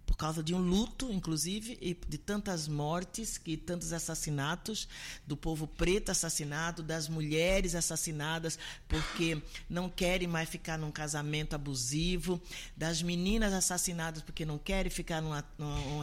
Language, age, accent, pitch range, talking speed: Portuguese, 50-69, Brazilian, 150-180 Hz, 140 wpm